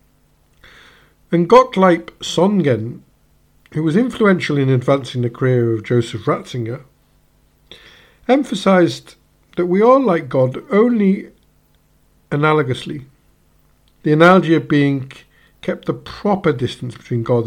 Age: 50-69